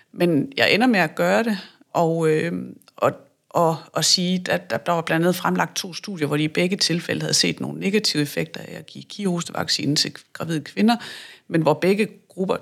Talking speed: 205 wpm